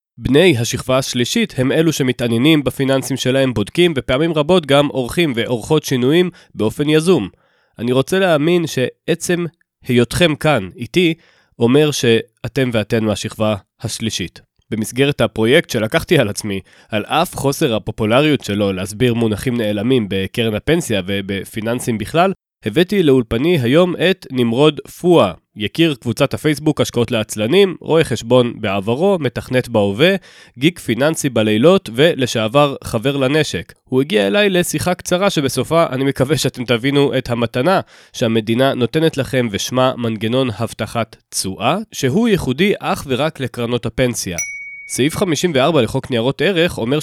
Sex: male